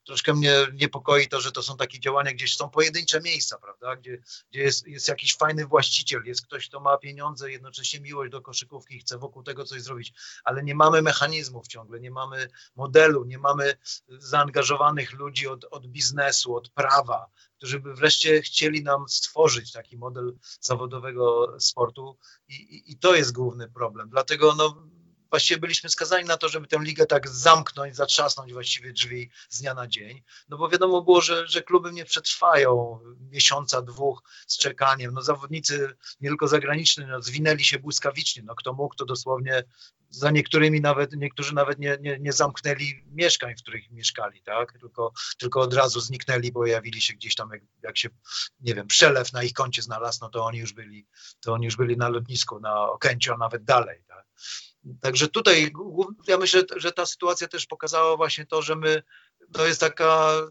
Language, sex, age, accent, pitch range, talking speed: Polish, male, 40-59, native, 125-155 Hz, 180 wpm